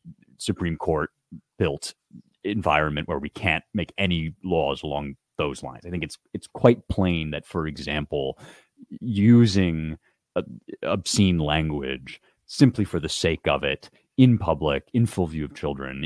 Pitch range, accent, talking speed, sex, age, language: 80-110 Hz, American, 140 wpm, male, 30-49, English